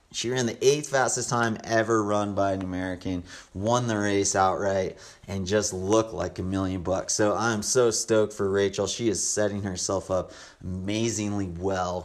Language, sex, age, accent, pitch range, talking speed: English, male, 30-49, American, 95-110 Hz, 175 wpm